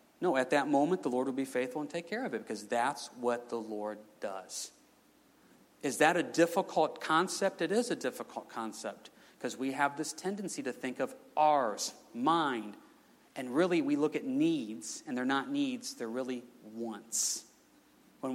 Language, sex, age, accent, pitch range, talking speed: English, male, 40-59, American, 130-220 Hz, 175 wpm